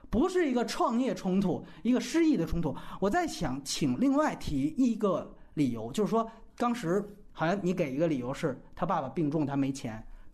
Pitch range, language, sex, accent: 175-265 Hz, Chinese, male, native